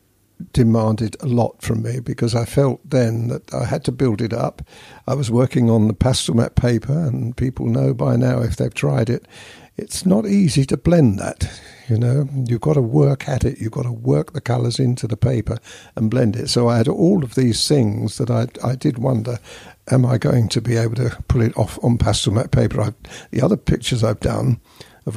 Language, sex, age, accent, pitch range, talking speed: English, male, 60-79, British, 115-135 Hz, 220 wpm